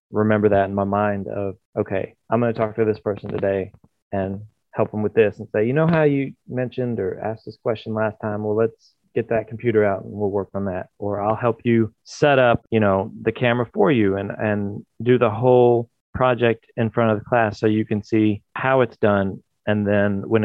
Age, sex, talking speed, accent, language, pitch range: 30-49, male, 225 wpm, American, English, 105-120 Hz